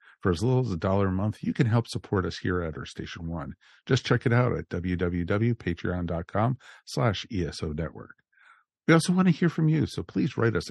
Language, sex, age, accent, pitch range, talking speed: English, male, 50-69, American, 85-125 Hz, 215 wpm